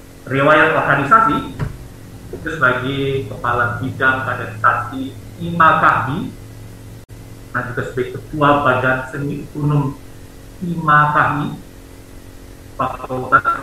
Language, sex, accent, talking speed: Indonesian, male, native, 80 wpm